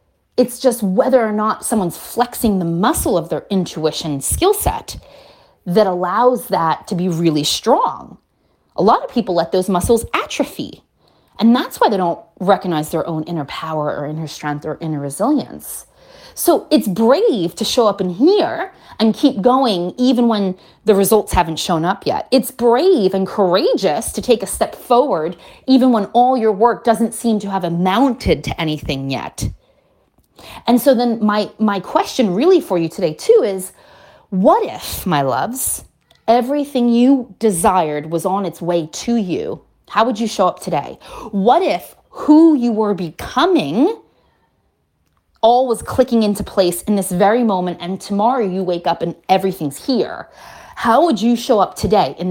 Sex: female